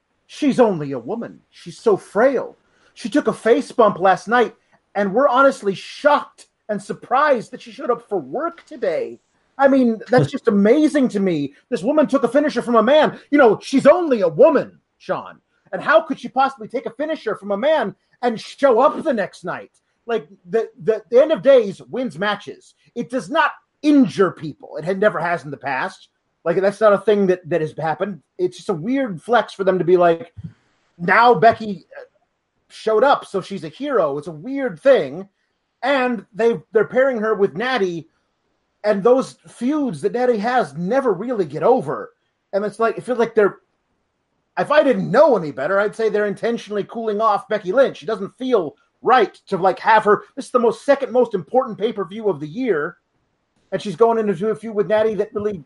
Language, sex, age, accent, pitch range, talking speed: English, male, 30-49, American, 195-260 Hz, 200 wpm